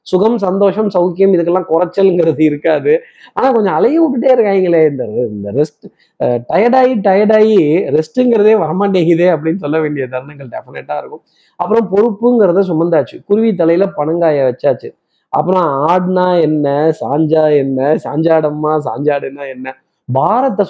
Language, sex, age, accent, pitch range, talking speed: Tamil, male, 20-39, native, 145-190 Hz, 115 wpm